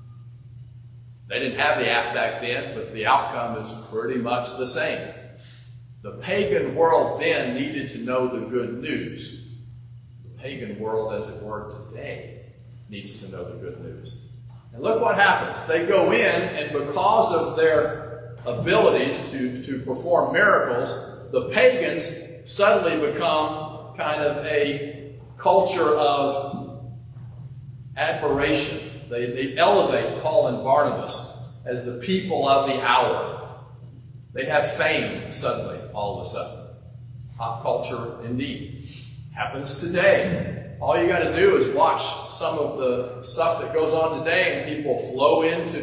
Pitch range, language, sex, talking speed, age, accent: 120-150 Hz, English, male, 140 wpm, 50-69, American